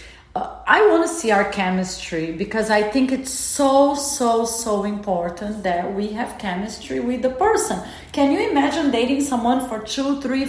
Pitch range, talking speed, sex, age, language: 205-270 Hz, 170 wpm, female, 40-59, English